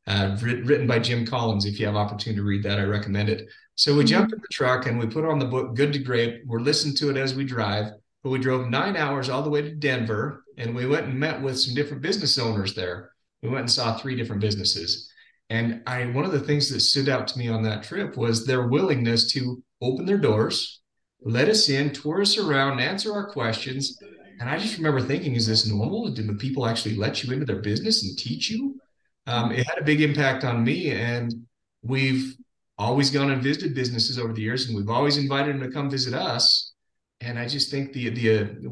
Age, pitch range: 30-49, 110-140 Hz